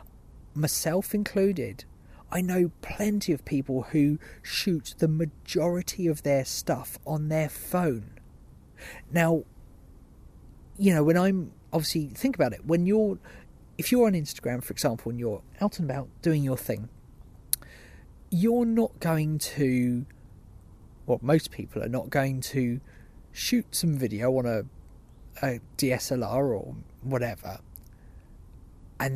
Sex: male